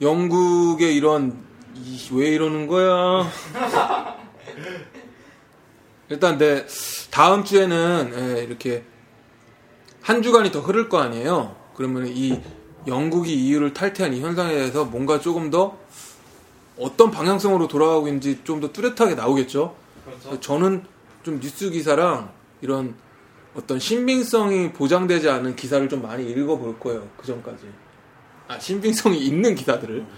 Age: 20-39